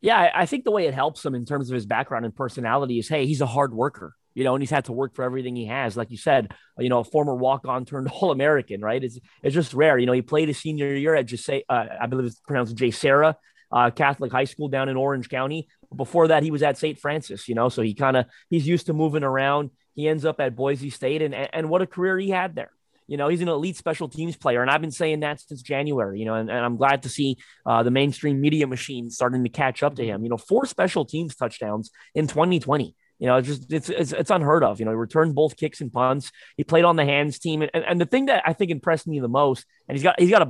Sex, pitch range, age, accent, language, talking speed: male, 125-155 Hz, 20-39, American, English, 275 wpm